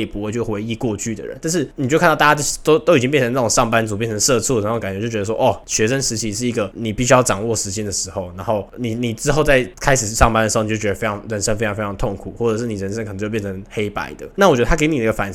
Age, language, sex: 20-39, Chinese, male